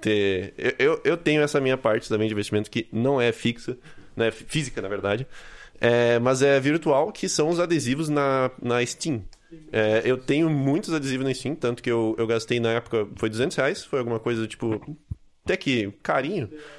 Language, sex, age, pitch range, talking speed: Portuguese, male, 20-39, 110-135 Hz, 195 wpm